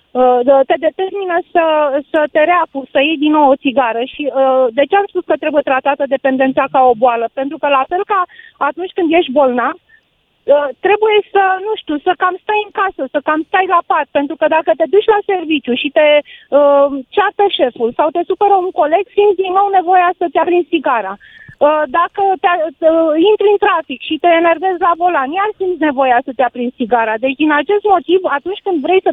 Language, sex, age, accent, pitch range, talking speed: Romanian, female, 30-49, native, 280-375 Hz, 210 wpm